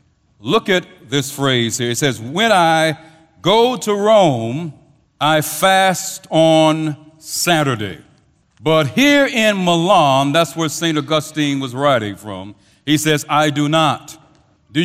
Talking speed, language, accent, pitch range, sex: 135 wpm, English, American, 140-185 Hz, male